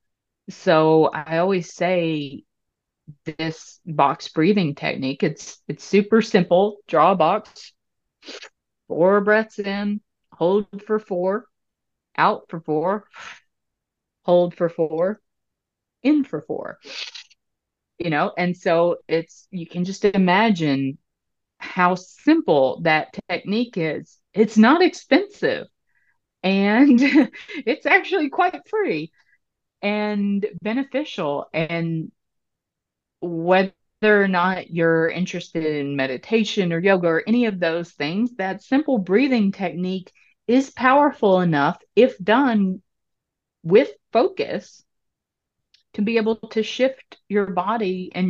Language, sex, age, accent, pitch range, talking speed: English, female, 30-49, American, 165-220 Hz, 110 wpm